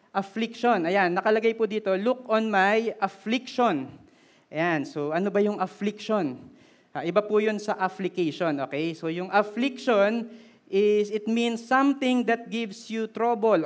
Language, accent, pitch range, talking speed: Filipino, native, 180-225 Hz, 145 wpm